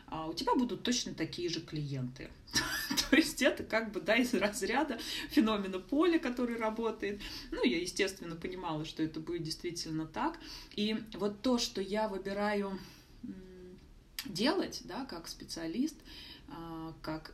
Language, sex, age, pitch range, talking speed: Russian, female, 20-39, 160-210 Hz, 130 wpm